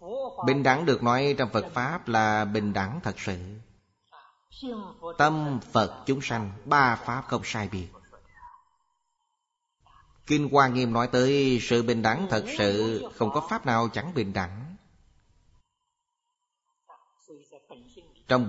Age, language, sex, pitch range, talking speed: 20-39, Vietnamese, male, 105-165 Hz, 125 wpm